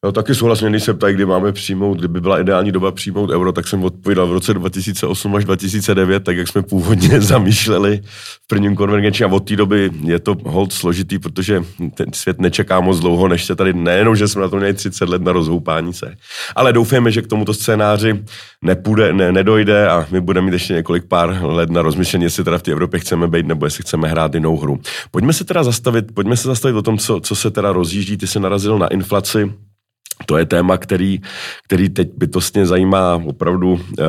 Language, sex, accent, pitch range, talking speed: Czech, male, native, 90-105 Hz, 210 wpm